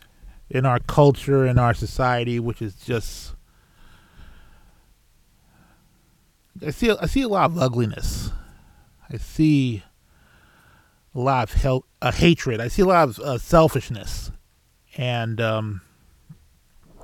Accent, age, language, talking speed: American, 20-39, English, 110 wpm